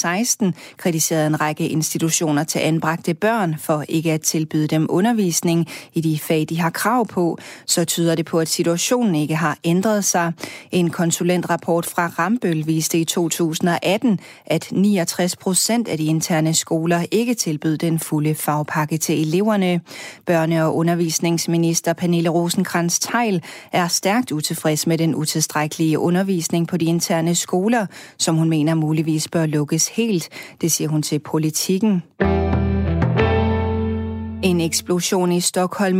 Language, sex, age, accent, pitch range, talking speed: Danish, female, 30-49, native, 160-180 Hz, 140 wpm